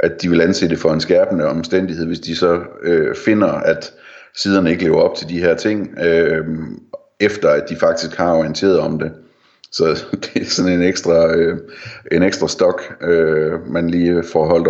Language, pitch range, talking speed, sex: Danish, 80-95 Hz, 170 wpm, male